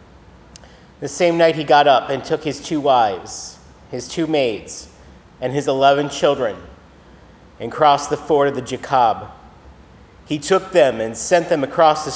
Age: 40-59